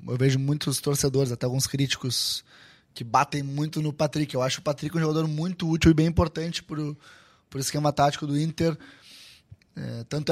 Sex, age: male, 10-29